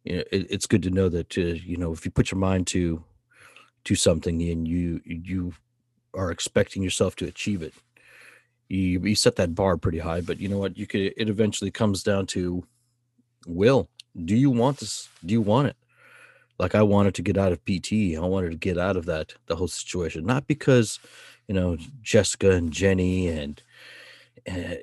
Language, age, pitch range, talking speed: English, 30-49, 85-110 Hz, 200 wpm